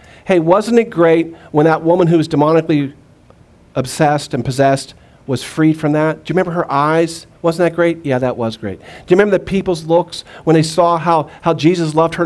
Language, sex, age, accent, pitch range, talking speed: English, male, 50-69, American, 130-175 Hz, 210 wpm